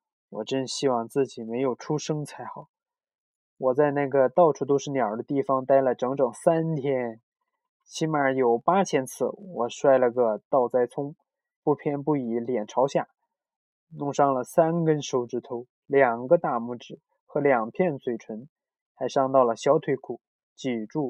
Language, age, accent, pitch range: Chinese, 20-39, native, 125-160 Hz